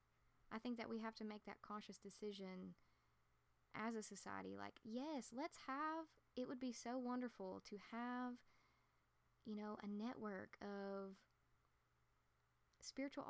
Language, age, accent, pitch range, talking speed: English, 10-29, American, 195-230 Hz, 135 wpm